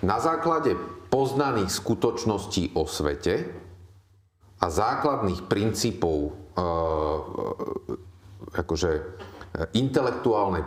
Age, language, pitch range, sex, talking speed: 40-59, Czech, 95-110 Hz, male, 60 wpm